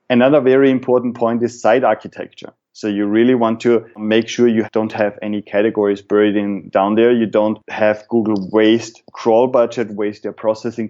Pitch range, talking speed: 105-115 Hz, 180 wpm